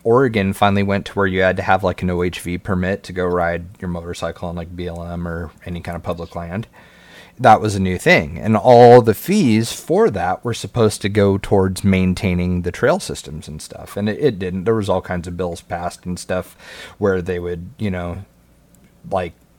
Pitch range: 85-100 Hz